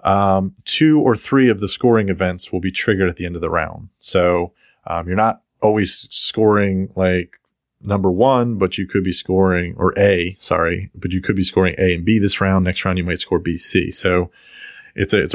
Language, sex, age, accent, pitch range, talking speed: English, male, 30-49, American, 95-115 Hz, 210 wpm